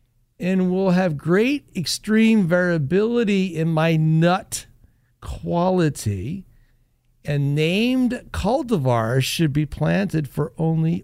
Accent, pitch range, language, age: American, 125-210 Hz, English, 50-69